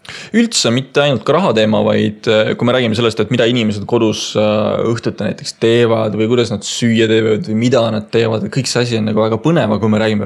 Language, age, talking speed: English, 20-39, 215 wpm